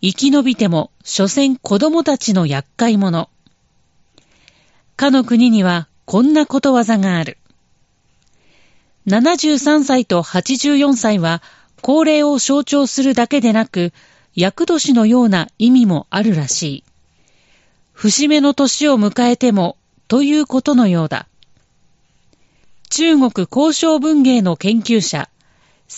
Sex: female